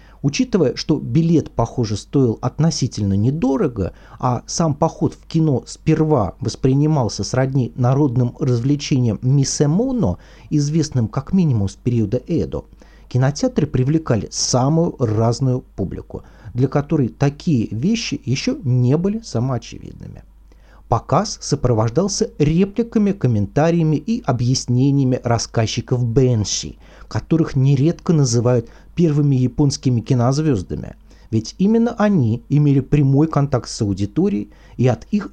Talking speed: 105 wpm